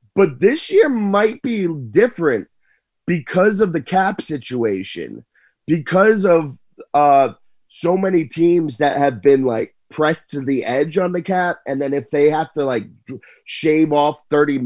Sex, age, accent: male, 30-49, American